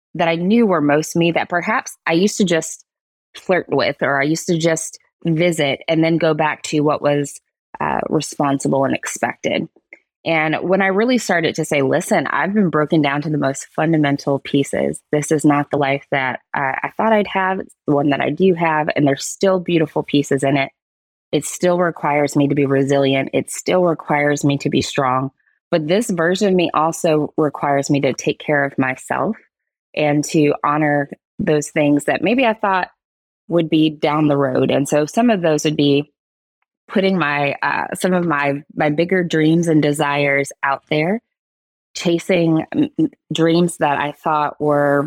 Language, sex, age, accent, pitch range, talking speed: English, female, 20-39, American, 145-180 Hz, 185 wpm